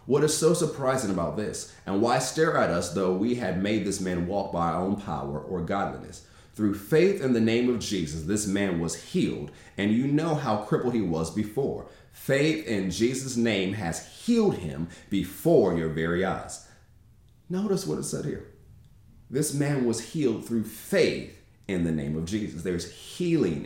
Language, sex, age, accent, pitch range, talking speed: English, male, 30-49, American, 90-120 Hz, 185 wpm